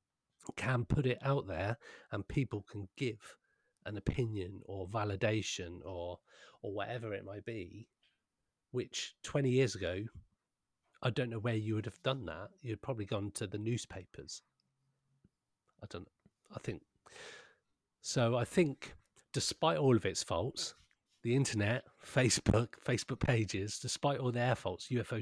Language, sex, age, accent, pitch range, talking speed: English, male, 40-59, British, 105-130 Hz, 145 wpm